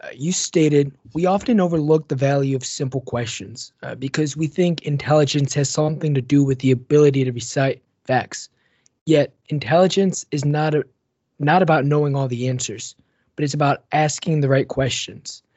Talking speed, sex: 165 wpm, male